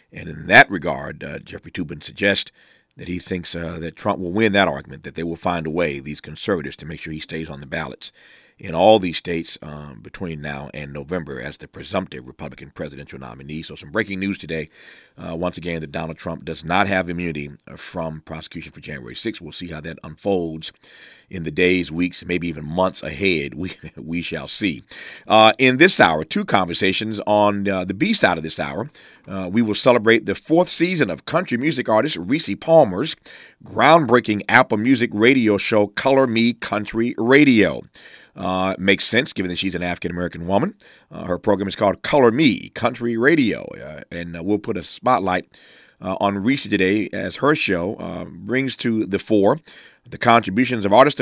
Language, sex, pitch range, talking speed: English, male, 85-110 Hz, 190 wpm